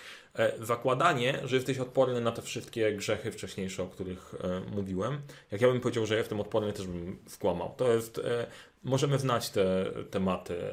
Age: 30-49